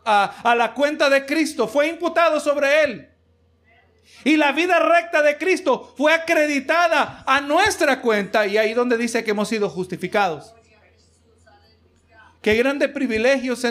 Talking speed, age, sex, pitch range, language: 145 wpm, 50-69, male, 205-275 Hz, Spanish